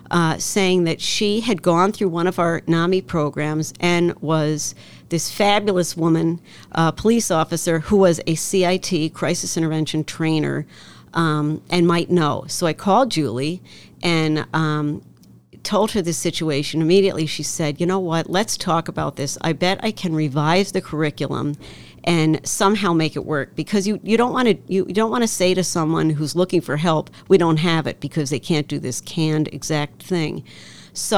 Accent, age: American, 50-69